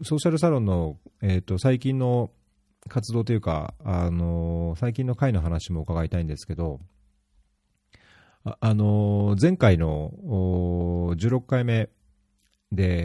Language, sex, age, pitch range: Japanese, male, 40-59, 85-110 Hz